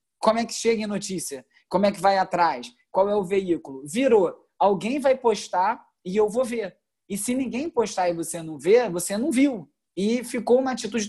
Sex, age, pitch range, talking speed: male, 20-39, 175-235 Hz, 205 wpm